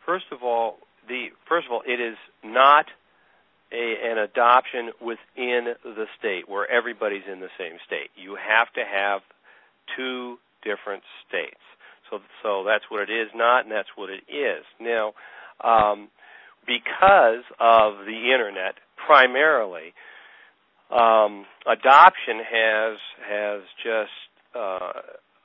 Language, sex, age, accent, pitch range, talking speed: English, male, 50-69, American, 110-125 Hz, 125 wpm